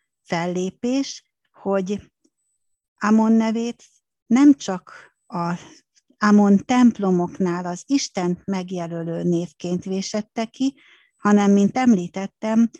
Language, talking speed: Hungarian, 85 wpm